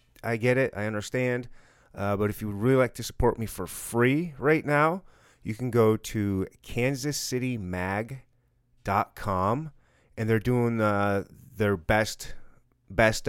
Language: English